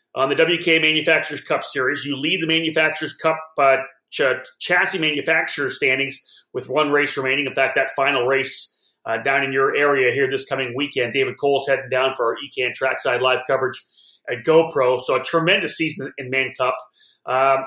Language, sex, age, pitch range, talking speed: English, male, 30-49, 145-210 Hz, 190 wpm